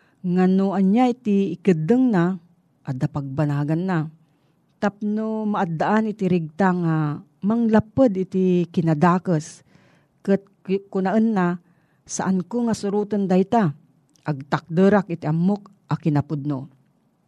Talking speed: 100 wpm